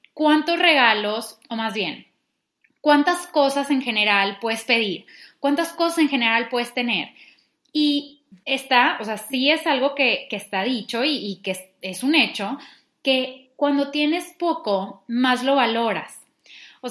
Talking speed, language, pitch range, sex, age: 150 wpm, English, 225-285 Hz, female, 10-29